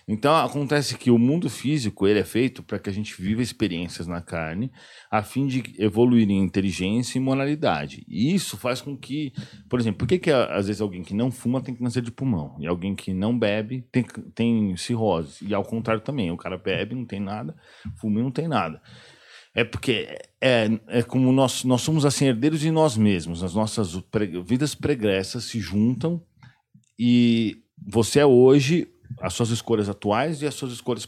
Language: Portuguese